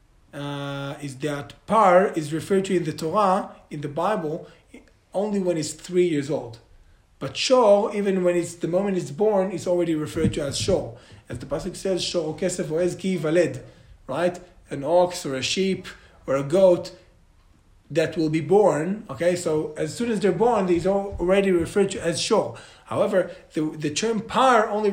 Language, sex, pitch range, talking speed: English, male, 165-215 Hz, 180 wpm